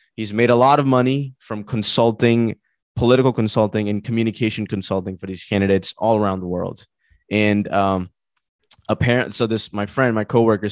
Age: 20-39